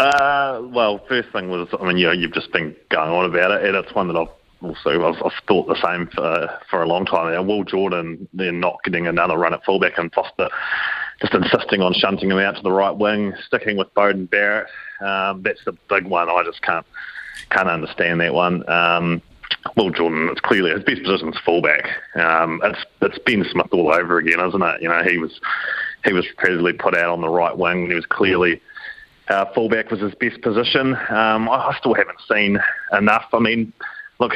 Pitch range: 85-105 Hz